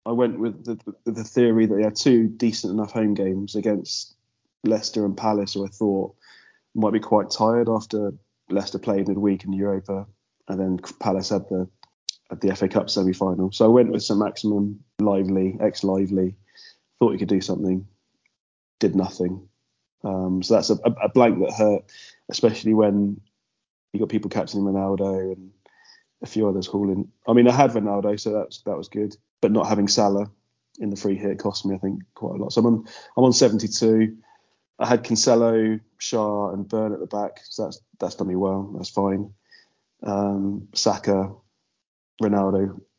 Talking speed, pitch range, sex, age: 185 wpm, 100-110 Hz, male, 20-39